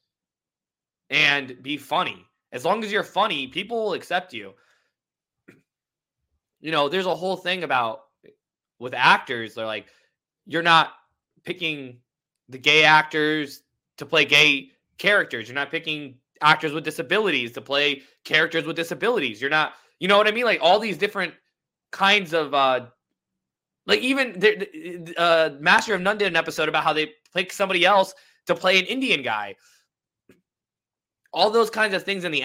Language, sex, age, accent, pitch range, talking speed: English, male, 20-39, American, 145-200 Hz, 160 wpm